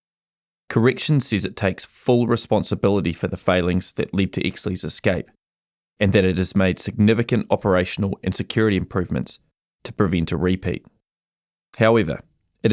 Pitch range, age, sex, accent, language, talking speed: 95-115 Hz, 20-39, male, Australian, English, 140 wpm